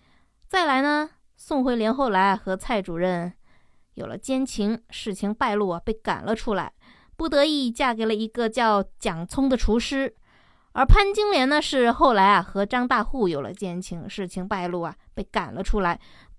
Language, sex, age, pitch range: Chinese, female, 20-39, 190-260 Hz